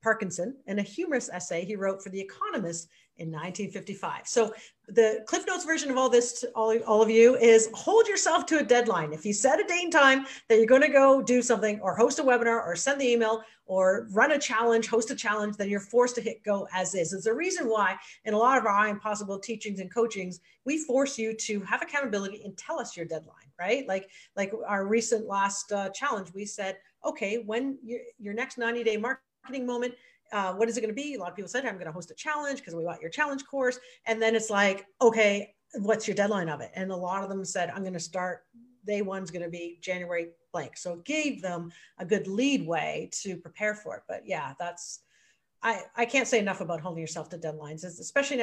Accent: American